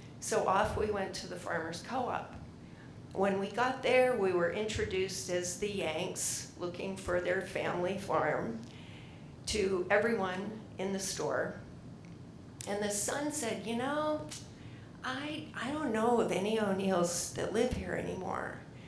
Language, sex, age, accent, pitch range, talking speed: English, female, 50-69, American, 185-235 Hz, 145 wpm